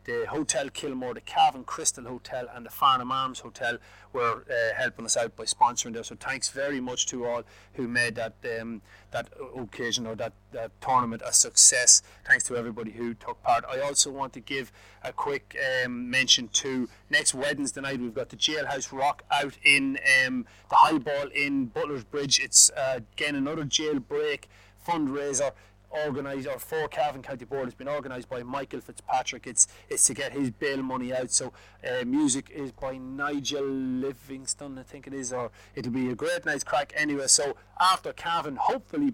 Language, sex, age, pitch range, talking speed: English, male, 30-49, 120-145 Hz, 180 wpm